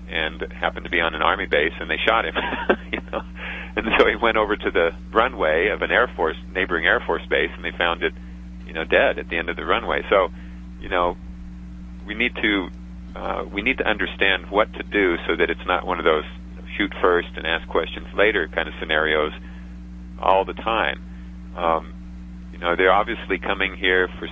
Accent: American